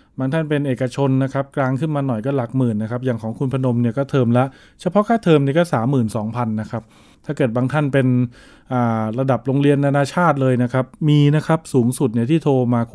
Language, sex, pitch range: Thai, male, 120-145 Hz